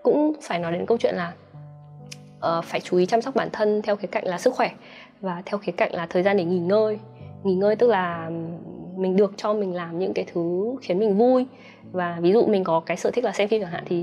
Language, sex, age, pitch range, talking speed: Vietnamese, female, 20-39, 180-220 Hz, 255 wpm